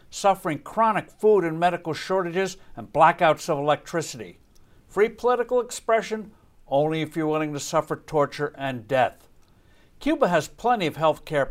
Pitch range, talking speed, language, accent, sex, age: 145-195 Hz, 145 wpm, English, American, male, 60-79